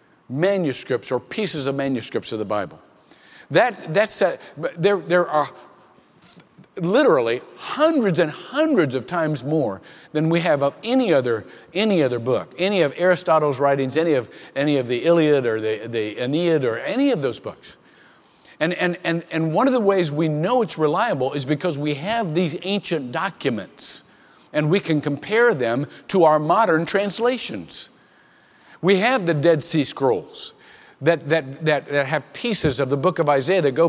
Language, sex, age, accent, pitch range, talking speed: English, male, 50-69, American, 140-195 Hz, 170 wpm